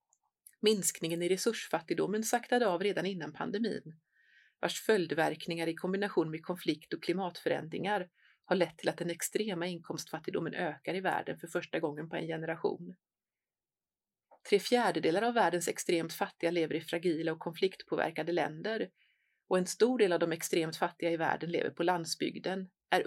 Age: 30-49